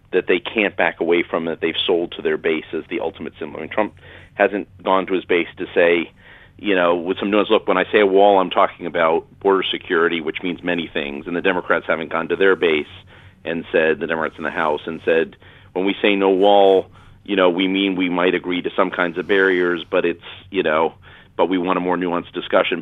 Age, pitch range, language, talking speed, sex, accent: 40-59, 90-105 Hz, English, 240 wpm, male, American